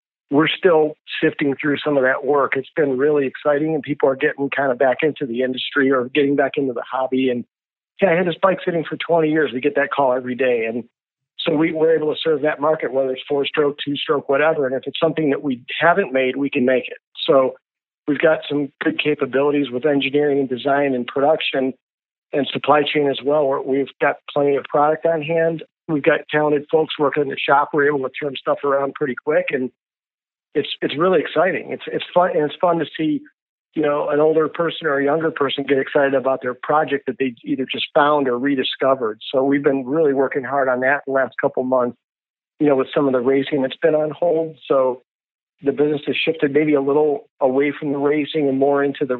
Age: 50-69